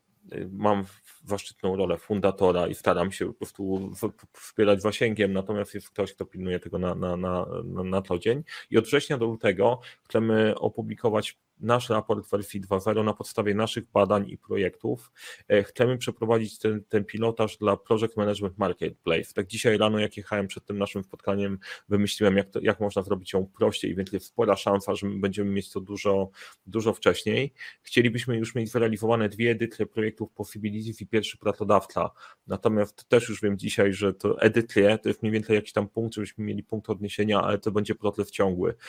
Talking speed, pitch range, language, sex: 170 wpm, 100-110 Hz, Polish, male